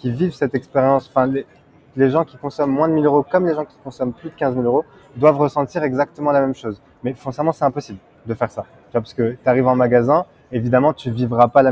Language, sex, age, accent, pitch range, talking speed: French, male, 20-39, French, 120-145 Hz, 260 wpm